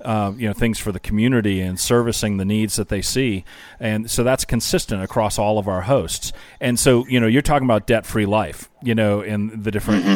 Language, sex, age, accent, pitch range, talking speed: English, male, 40-59, American, 105-120 Hz, 225 wpm